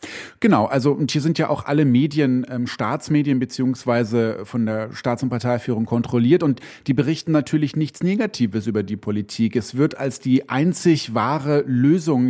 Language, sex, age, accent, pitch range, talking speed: German, male, 30-49, German, 125-155 Hz, 165 wpm